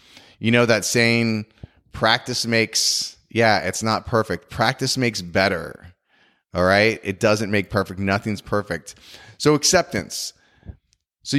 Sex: male